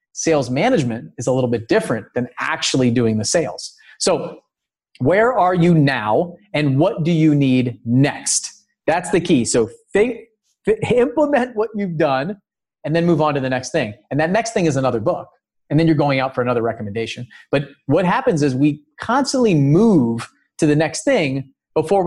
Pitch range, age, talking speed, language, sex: 130-175 Hz, 30-49, 180 wpm, English, male